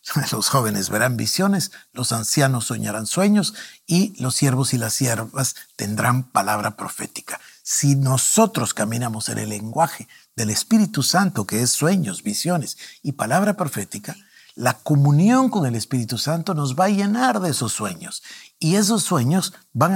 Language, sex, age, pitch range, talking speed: Spanish, male, 50-69, 125-195 Hz, 150 wpm